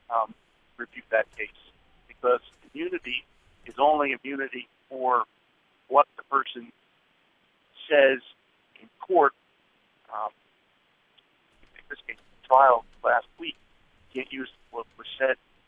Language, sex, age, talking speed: English, male, 50-69, 115 wpm